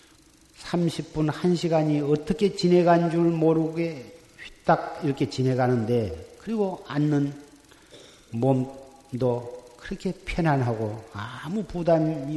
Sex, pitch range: male, 130-175 Hz